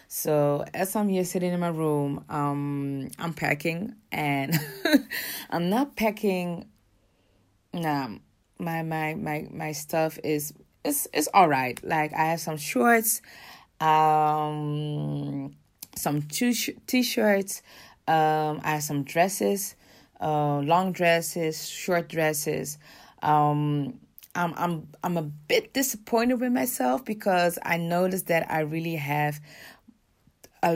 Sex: female